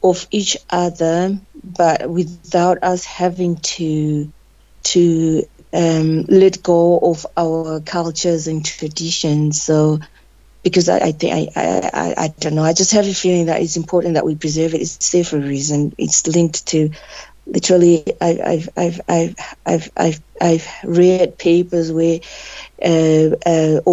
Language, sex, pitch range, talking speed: English, female, 160-180 Hz, 155 wpm